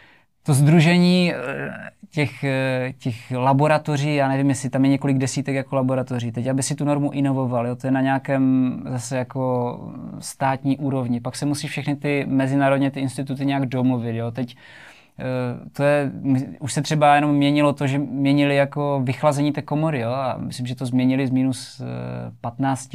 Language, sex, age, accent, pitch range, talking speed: Czech, male, 20-39, native, 125-145 Hz, 165 wpm